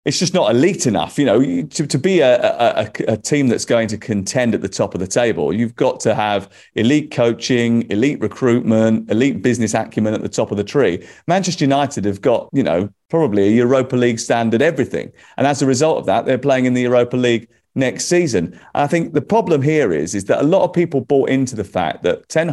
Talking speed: 230 wpm